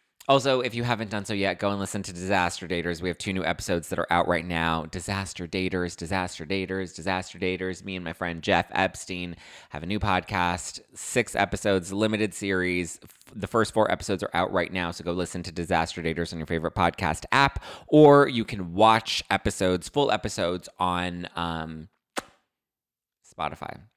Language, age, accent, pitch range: English, 30-49, American, 85-100 Hz